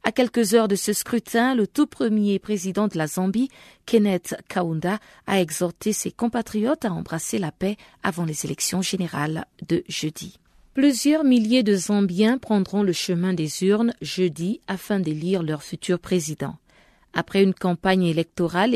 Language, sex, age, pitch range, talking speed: French, female, 40-59, 170-215 Hz, 155 wpm